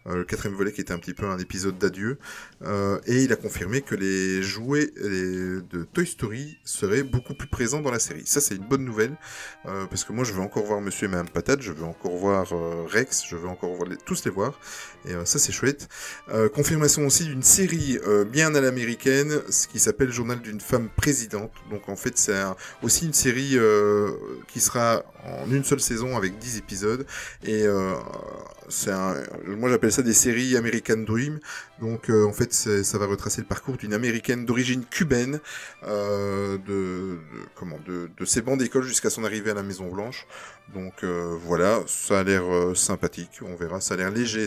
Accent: French